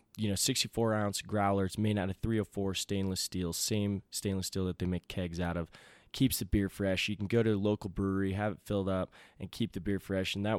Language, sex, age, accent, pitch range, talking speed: English, male, 20-39, American, 90-105 Hz, 240 wpm